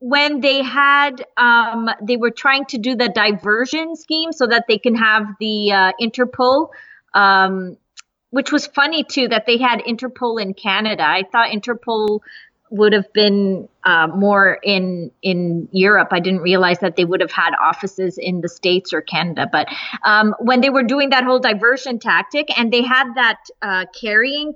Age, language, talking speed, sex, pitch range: 30-49, English, 175 wpm, female, 210-265 Hz